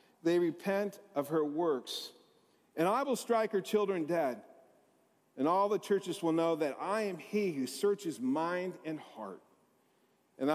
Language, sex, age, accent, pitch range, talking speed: English, male, 50-69, American, 150-210 Hz, 160 wpm